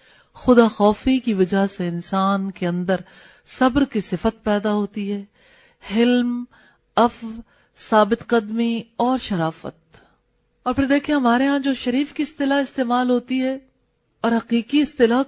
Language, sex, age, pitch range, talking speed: English, female, 40-59, 180-235 Hz, 140 wpm